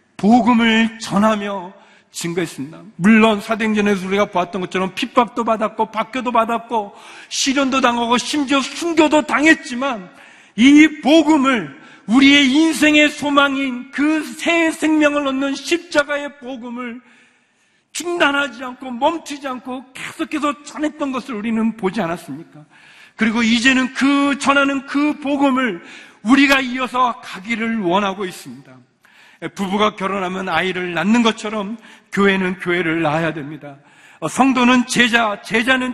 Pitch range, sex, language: 220-285 Hz, male, Korean